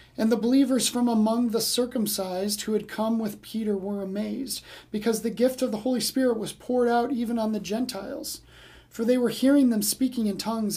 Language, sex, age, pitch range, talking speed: English, male, 40-59, 210-245 Hz, 200 wpm